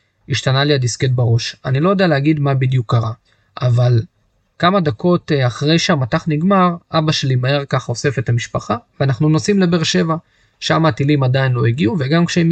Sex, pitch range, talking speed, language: male, 125-165 Hz, 170 wpm, Hebrew